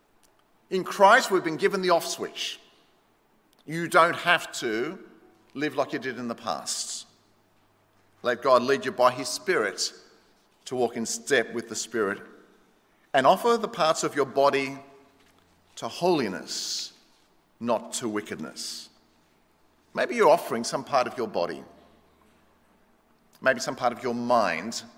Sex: male